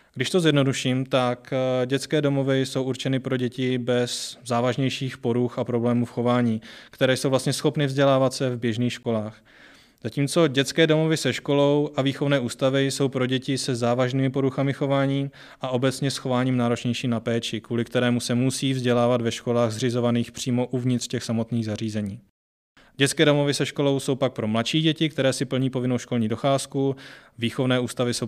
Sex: male